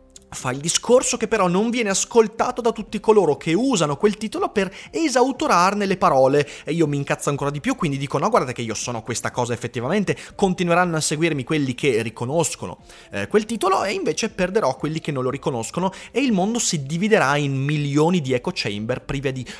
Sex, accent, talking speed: male, native, 200 wpm